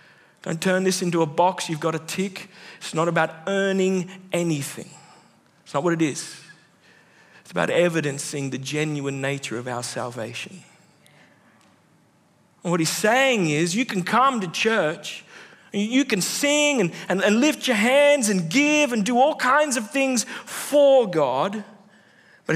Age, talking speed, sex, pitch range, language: 40-59, 155 wpm, male, 160-215 Hz, English